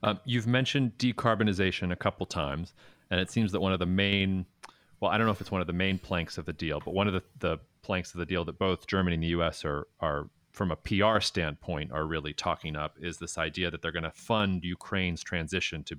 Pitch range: 85-100 Hz